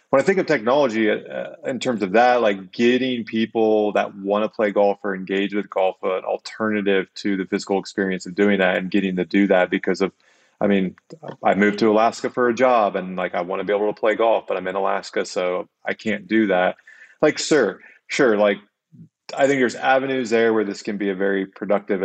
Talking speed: 225 wpm